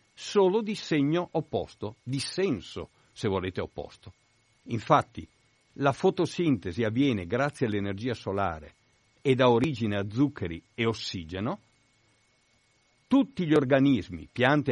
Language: Italian